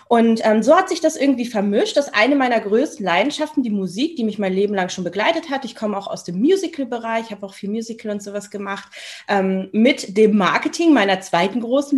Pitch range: 190-240 Hz